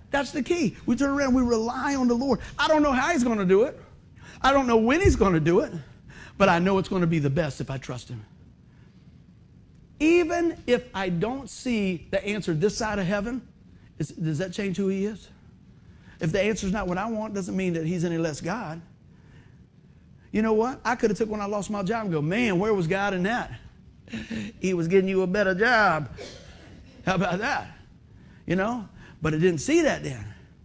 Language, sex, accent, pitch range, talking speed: English, male, American, 185-230 Hz, 220 wpm